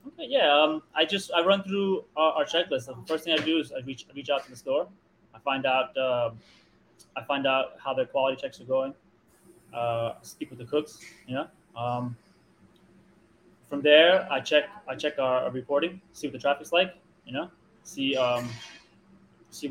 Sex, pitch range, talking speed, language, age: male, 130-160 Hz, 195 wpm, English, 20-39